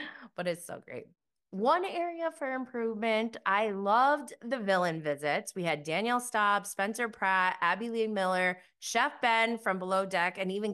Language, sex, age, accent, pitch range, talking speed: English, female, 20-39, American, 165-230 Hz, 160 wpm